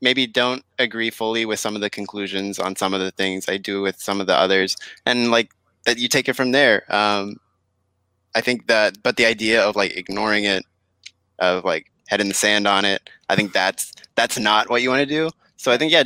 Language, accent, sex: English, American, male